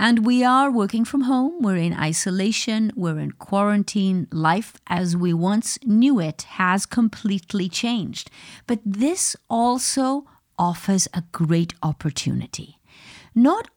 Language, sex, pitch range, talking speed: English, female, 175-245 Hz, 125 wpm